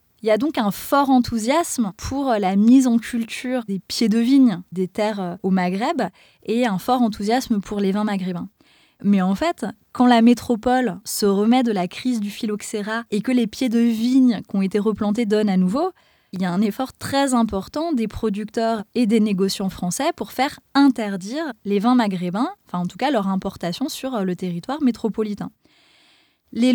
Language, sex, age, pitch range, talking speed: French, female, 20-39, 195-250 Hz, 190 wpm